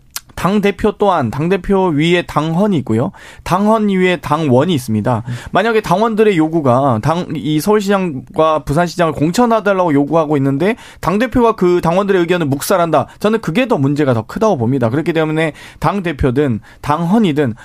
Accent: native